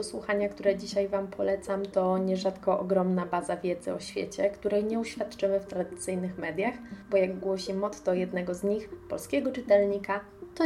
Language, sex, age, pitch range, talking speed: Polish, female, 20-39, 185-205 Hz, 160 wpm